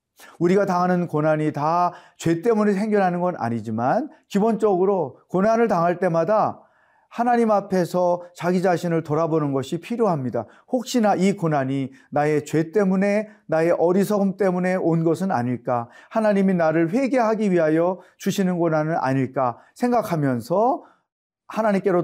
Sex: male